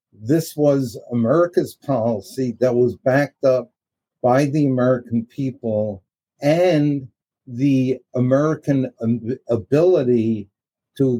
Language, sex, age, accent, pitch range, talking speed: English, male, 60-79, American, 120-145 Hz, 90 wpm